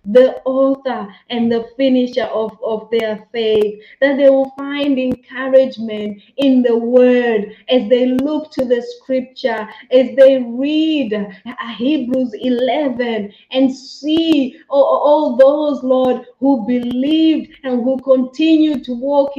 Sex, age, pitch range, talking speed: female, 30-49, 230-270 Hz, 125 wpm